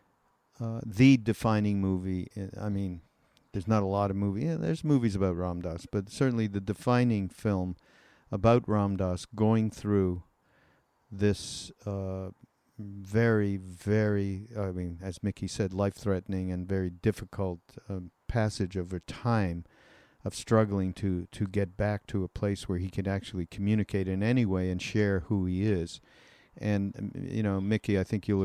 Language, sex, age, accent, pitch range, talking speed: English, male, 50-69, American, 95-110 Hz, 155 wpm